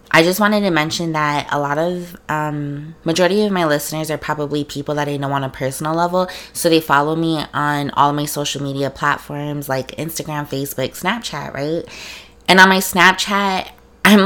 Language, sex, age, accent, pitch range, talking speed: English, female, 20-39, American, 140-175 Hz, 190 wpm